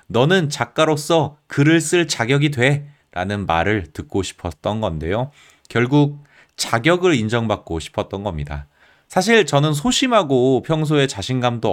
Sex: male